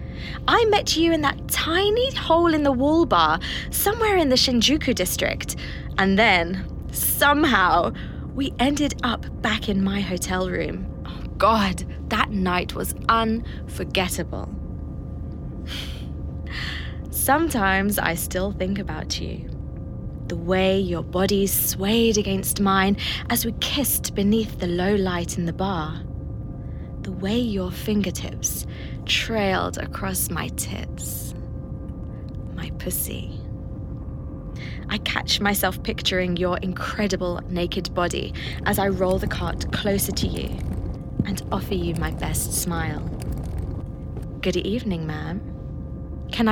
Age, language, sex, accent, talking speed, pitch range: 20-39, English, female, British, 120 wpm, 180-275 Hz